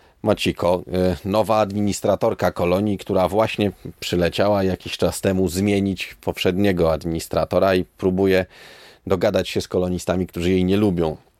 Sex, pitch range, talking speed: male, 90-115 Hz, 120 wpm